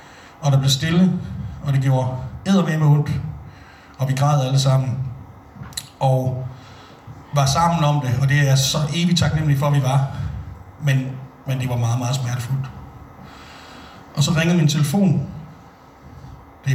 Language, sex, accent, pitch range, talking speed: Danish, male, native, 140-170 Hz, 155 wpm